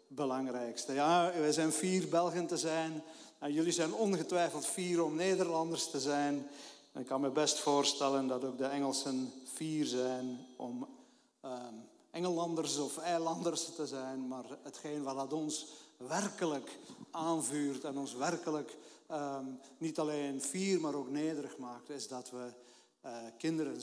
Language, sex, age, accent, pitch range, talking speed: Dutch, male, 50-69, Dutch, 135-165 Hz, 150 wpm